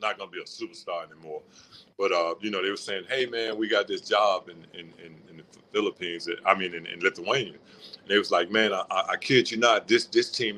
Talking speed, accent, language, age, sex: 250 wpm, American, English, 50-69, male